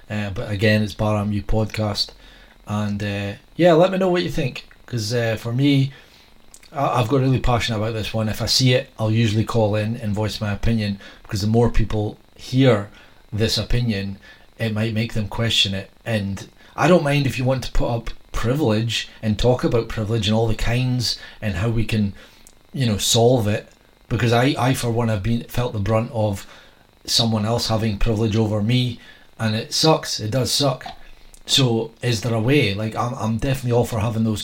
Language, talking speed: English, 205 wpm